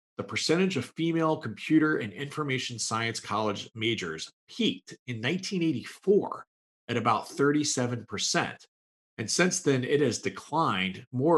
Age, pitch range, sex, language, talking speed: 40-59, 110-150 Hz, male, English, 120 wpm